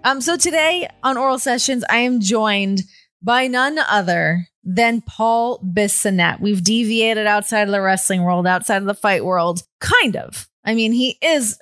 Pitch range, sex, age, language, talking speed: 190-250 Hz, female, 20-39, English, 170 wpm